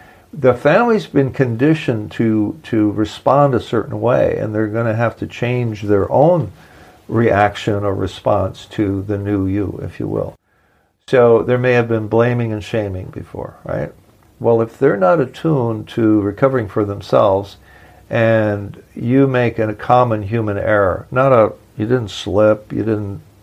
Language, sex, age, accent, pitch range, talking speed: English, male, 60-79, American, 105-125 Hz, 160 wpm